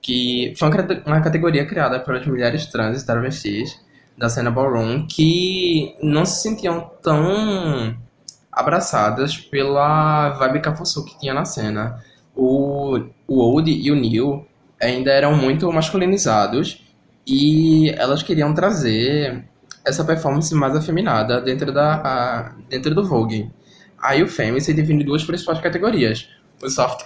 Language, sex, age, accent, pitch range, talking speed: Portuguese, male, 10-29, Brazilian, 120-155 Hz, 135 wpm